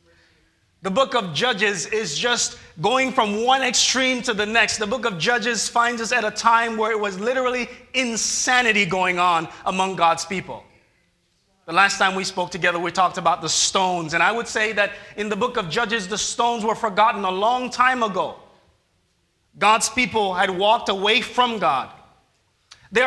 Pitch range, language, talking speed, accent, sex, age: 190-250 Hz, English, 180 wpm, American, male, 30-49